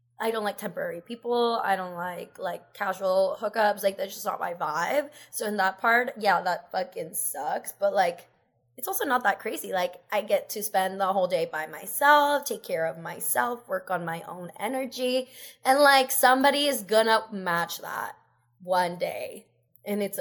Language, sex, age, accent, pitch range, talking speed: English, female, 20-39, American, 190-250 Hz, 185 wpm